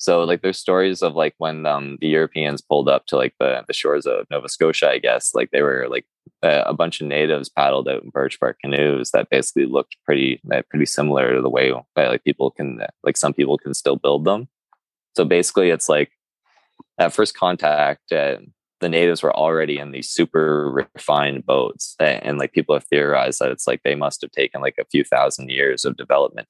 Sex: male